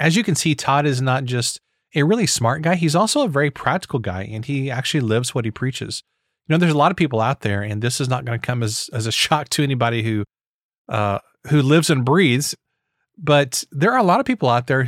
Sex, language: male, English